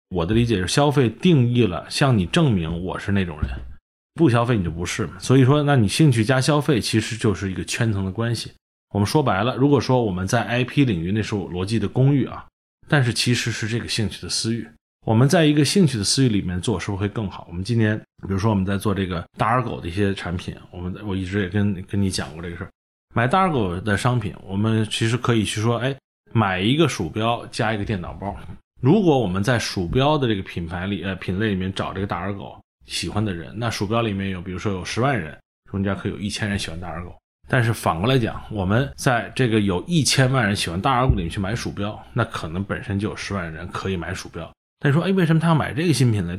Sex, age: male, 20-39